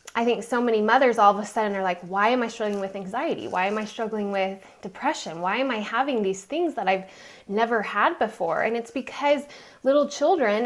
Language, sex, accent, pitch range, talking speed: English, female, American, 200-255 Hz, 220 wpm